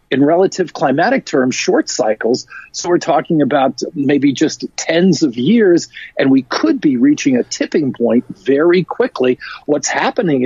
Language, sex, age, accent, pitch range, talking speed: English, male, 50-69, American, 135-225 Hz, 155 wpm